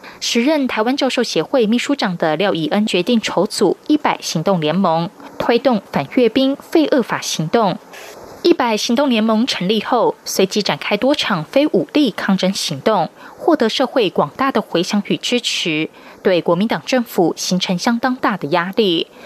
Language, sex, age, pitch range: German, female, 20-39, 185-260 Hz